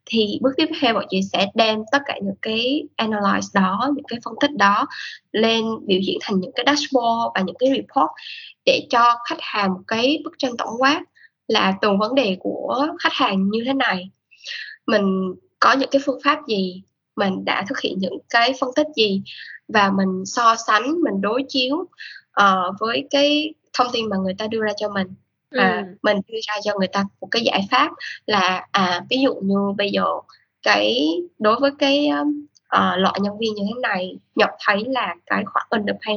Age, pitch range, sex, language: 10-29, 200-270 Hz, female, Vietnamese